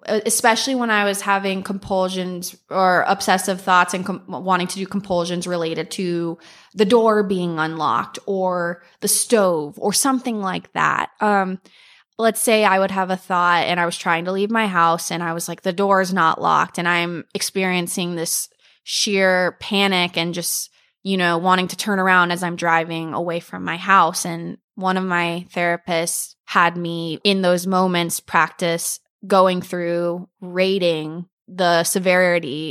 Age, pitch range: 20-39, 170-195 Hz